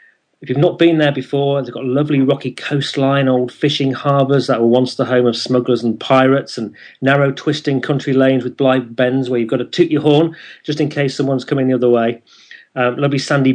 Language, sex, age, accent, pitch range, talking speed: English, male, 40-59, British, 120-150 Hz, 215 wpm